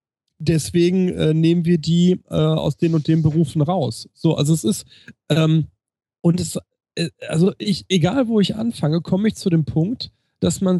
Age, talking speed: 40-59, 185 wpm